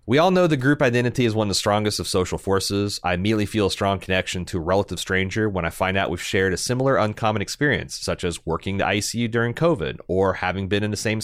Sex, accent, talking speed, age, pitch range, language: male, American, 250 wpm, 30-49, 95-120 Hz, English